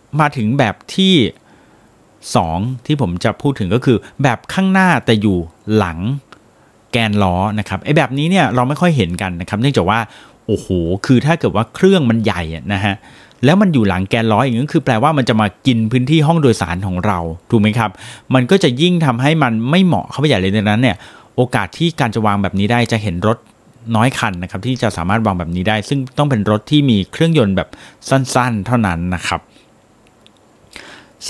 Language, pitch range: Thai, 100-130 Hz